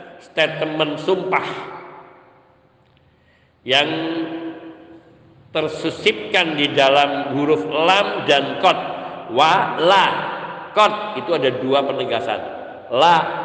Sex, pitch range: male, 155-195 Hz